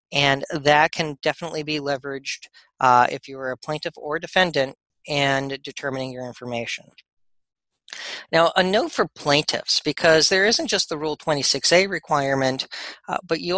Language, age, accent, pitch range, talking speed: English, 40-59, American, 130-150 Hz, 150 wpm